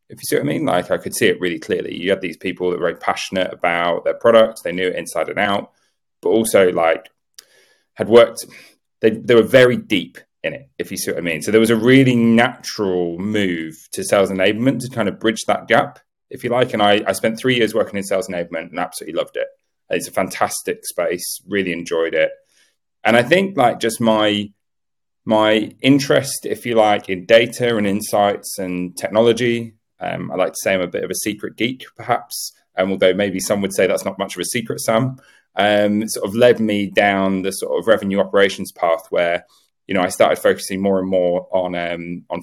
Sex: male